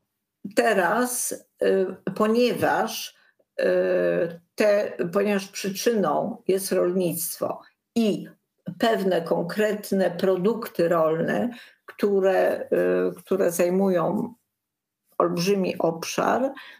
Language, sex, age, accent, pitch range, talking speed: Polish, female, 50-69, native, 180-230 Hz, 60 wpm